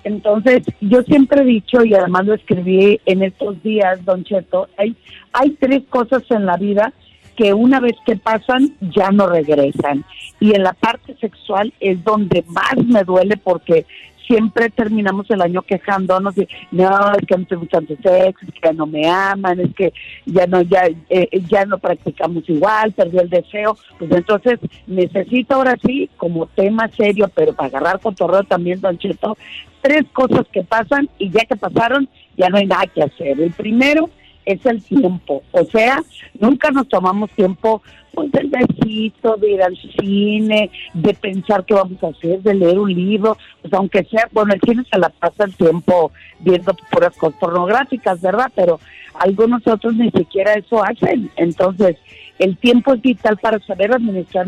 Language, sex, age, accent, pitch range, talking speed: Spanish, female, 50-69, Mexican, 180-225 Hz, 170 wpm